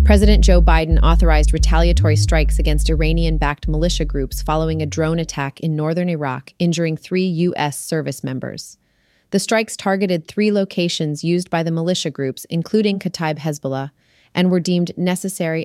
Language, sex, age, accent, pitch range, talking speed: English, female, 30-49, American, 145-180 Hz, 150 wpm